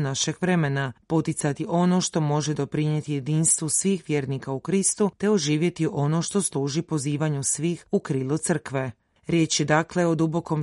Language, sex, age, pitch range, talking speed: Croatian, female, 30-49, 145-175 Hz, 155 wpm